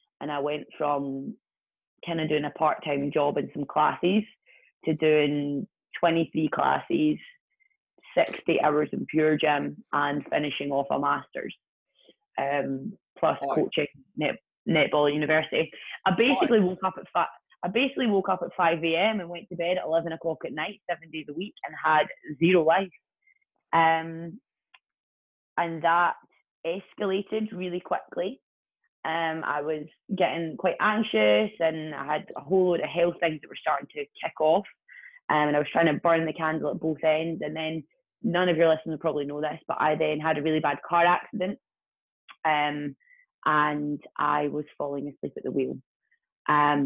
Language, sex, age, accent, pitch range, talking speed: English, female, 20-39, British, 150-180 Hz, 160 wpm